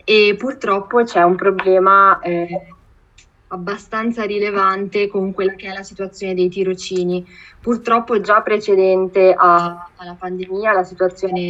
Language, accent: Italian, native